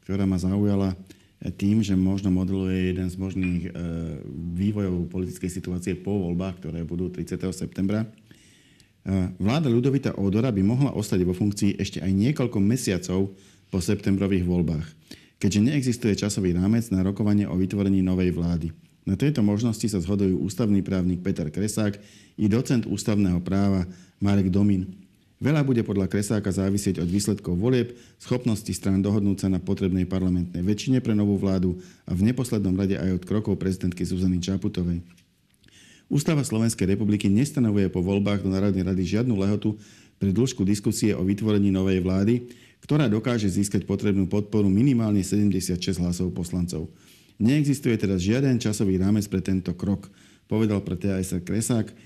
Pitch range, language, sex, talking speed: 95-105 Hz, Slovak, male, 145 wpm